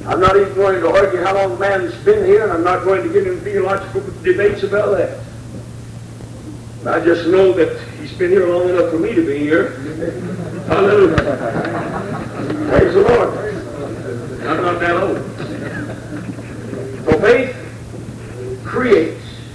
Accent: American